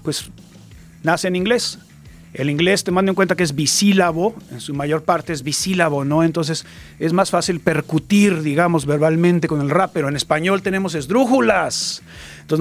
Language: Spanish